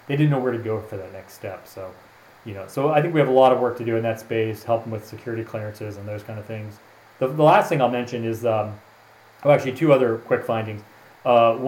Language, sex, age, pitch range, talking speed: English, male, 30-49, 110-130 Hz, 260 wpm